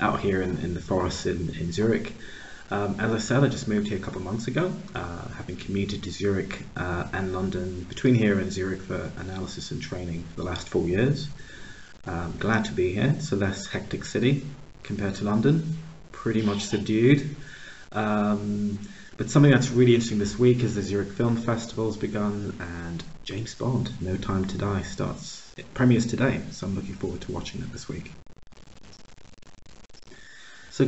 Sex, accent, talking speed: male, British, 185 wpm